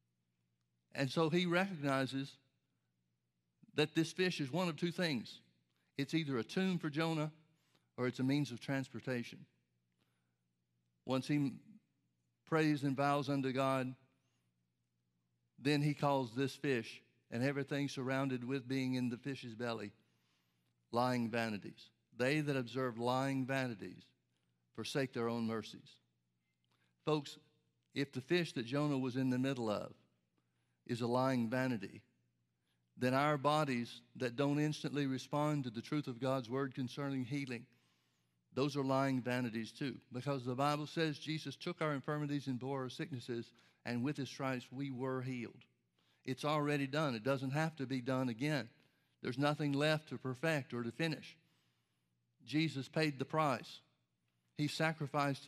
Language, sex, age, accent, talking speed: English, male, 60-79, American, 145 wpm